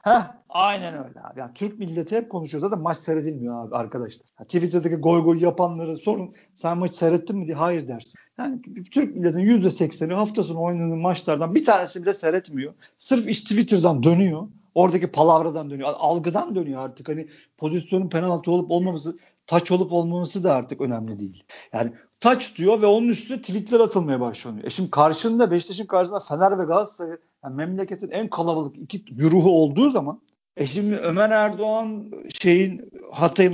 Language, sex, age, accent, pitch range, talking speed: Turkish, male, 50-69, native, 155-200 Hz, 165 wpm